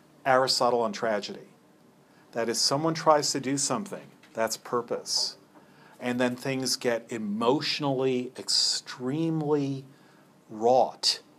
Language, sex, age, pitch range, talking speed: English, male, 50-69, 115-140 Hz, 100 wpm